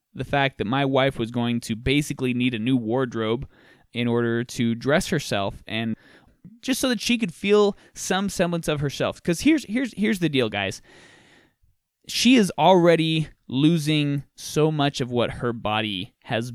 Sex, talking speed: male, 170 wpm